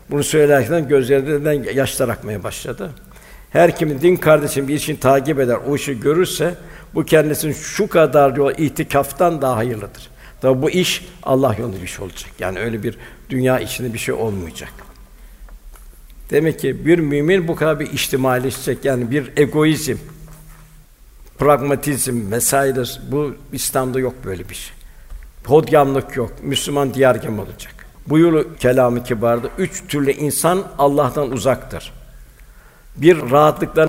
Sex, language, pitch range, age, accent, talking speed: male, Turkish, 130-155 Hz, 60-79, native, 130 wpm